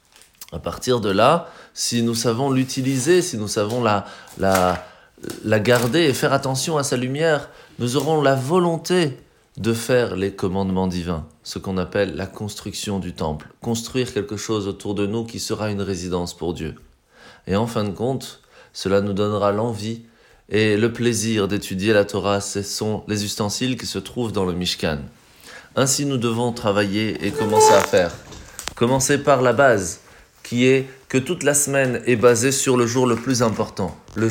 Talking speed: 175 wpm